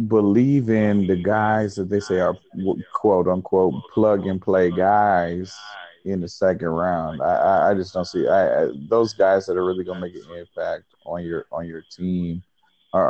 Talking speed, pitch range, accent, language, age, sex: 185 wpm, 85-100 Hz, American, English, 30-49, male